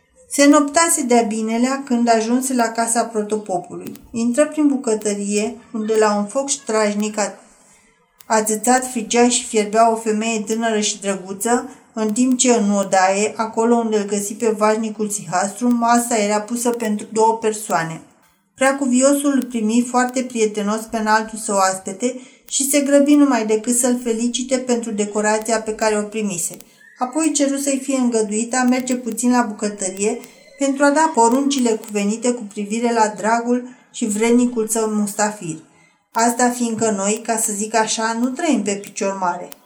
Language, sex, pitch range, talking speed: Romanian, female, 210-245 Hz, 155 wpm